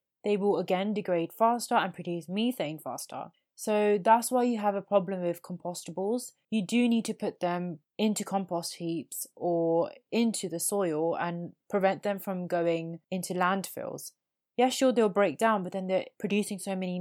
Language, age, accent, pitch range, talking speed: English, 20-39, British, 180-225 Hz, 175 wpm